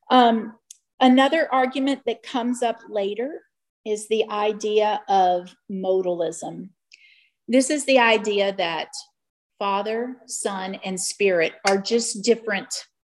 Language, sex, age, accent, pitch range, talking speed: English, female, 40-59, American, 185-240 Hz, 105 wpm